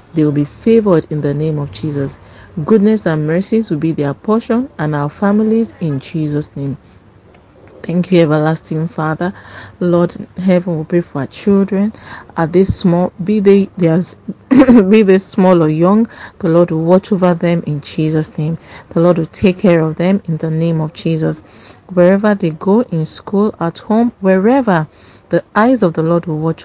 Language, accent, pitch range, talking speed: English, Nigerian, 155-190 Hz, 180 wpm